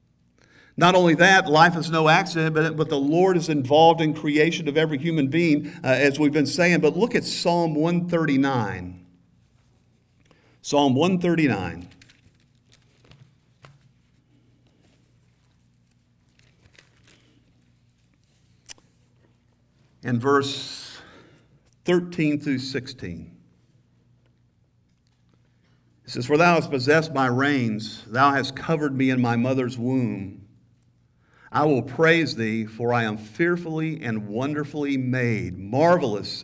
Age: 50-69